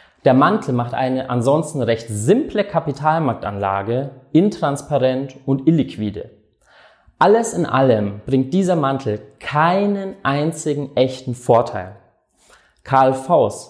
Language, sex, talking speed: German, male, 95 wpm